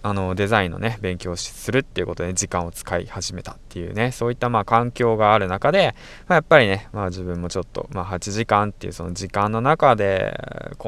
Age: 20-39